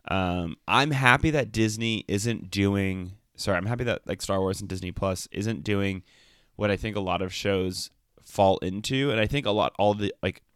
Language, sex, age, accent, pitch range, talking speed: English, male, 20-39, American, 90-105 Hz, 205 wpm